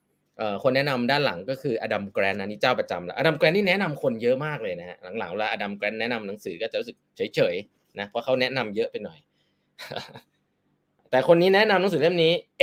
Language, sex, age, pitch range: Thai, male, 20-39, 125-180 Hz